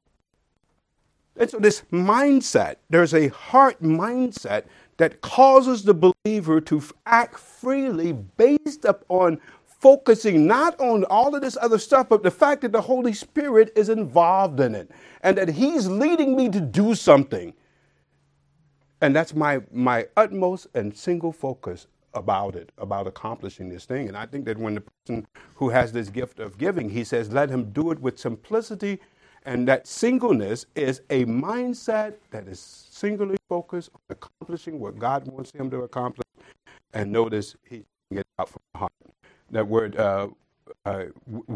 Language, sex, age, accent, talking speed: English, male, 50-69, American, 160 wpm